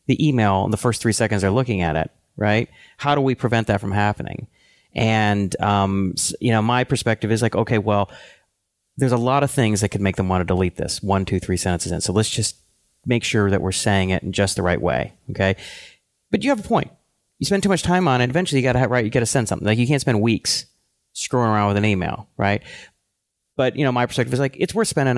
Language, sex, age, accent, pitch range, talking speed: English, male, 30-49, American, 100-130 Hz, 250 wpm